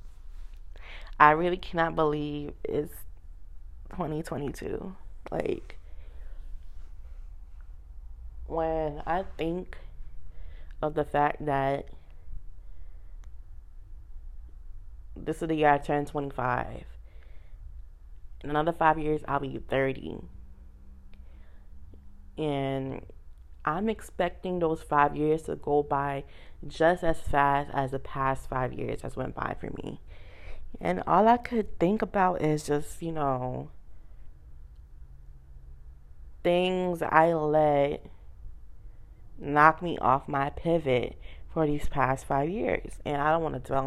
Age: 20-39